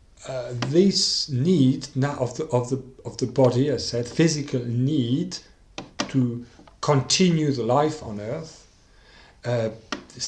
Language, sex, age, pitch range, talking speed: English, male, 50-69, 120-150 Hz, 130 wpm